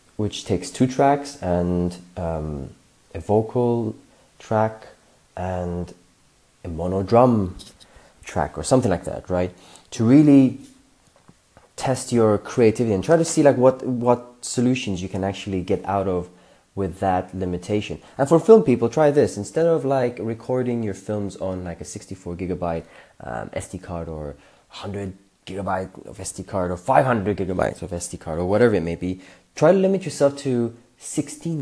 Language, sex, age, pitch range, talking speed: English, male, 30-49, 90-120 Hz, 160 wpm